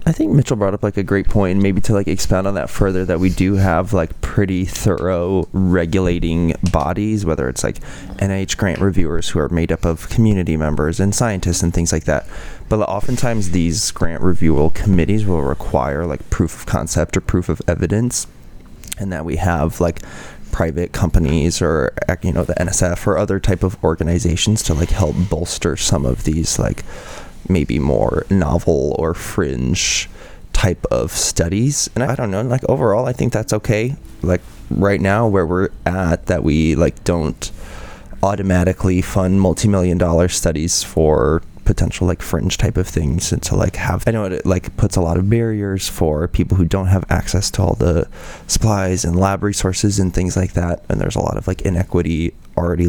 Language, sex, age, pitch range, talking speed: English, male, 20-39, 85-100 Hz, 185 wpm